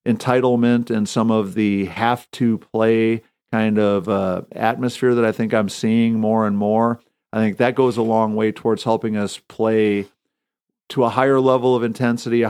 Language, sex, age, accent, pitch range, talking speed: English, male, 50-69, American, 110-120 Hz, 185 wpm